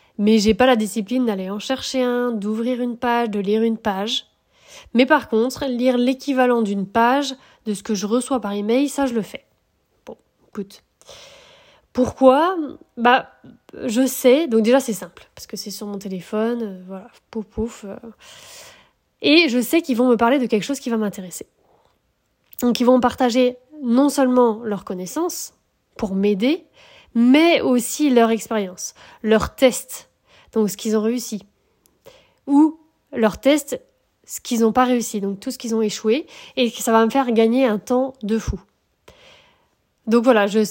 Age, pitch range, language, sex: 20-39, 220-260 Hz, French, female